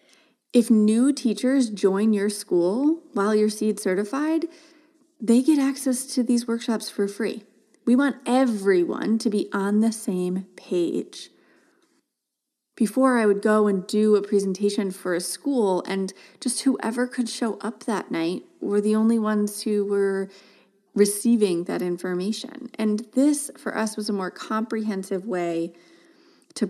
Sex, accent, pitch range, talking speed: female, American, 195-255 Hz, 145 wpm